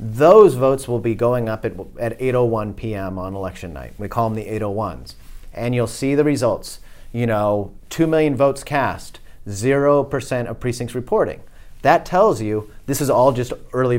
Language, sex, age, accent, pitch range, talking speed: English, male, 30-49, American, 110-135 Hz, 180 wpm